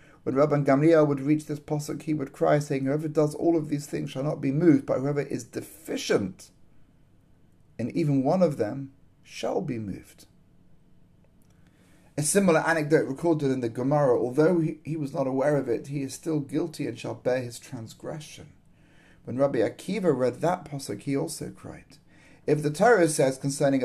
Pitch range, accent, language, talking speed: 135-160 Hz, British, English, 180 wpm